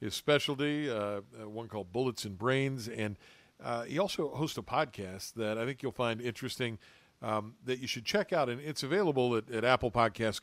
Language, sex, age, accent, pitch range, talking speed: English, male, 50-69, American, 110-135 Hz, 195 wpm